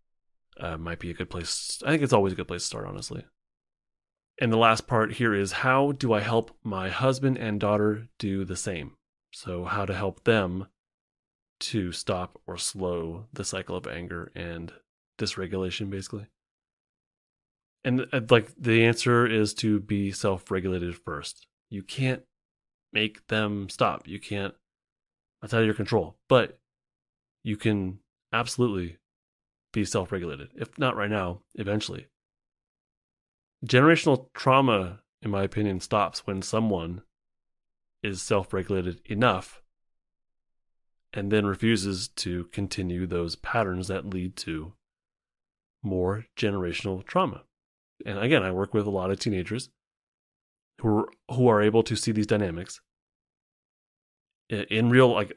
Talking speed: 140 wpm